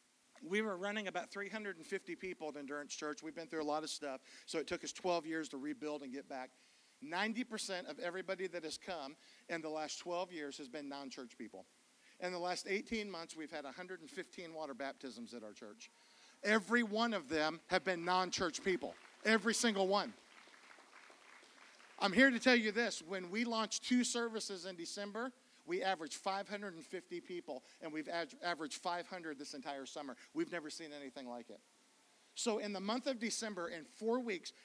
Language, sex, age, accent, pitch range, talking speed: English, male, 50-69, American, 165-225 Hz, 185 wpm